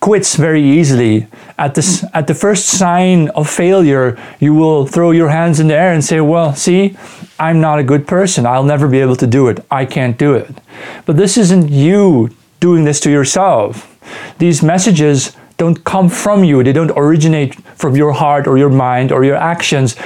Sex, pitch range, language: male, 130-170 Hz, English